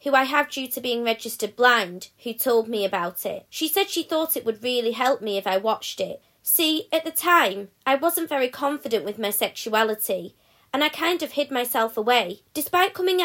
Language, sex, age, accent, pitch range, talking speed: English, female, 20-39, British, 220-290 Hz, 210 wpm